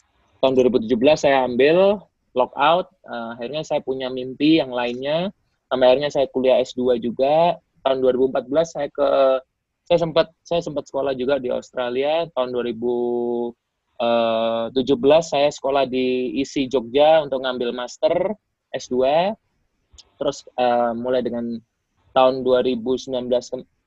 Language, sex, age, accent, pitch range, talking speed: Indonesian, male, 20-39, native, 125-145 Hz, 120 wpm